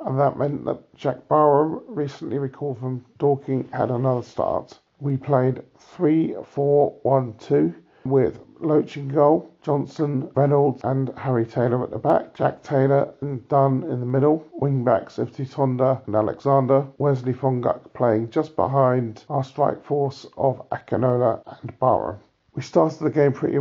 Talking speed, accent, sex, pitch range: 140 wpm, British, male, 130-145 Hz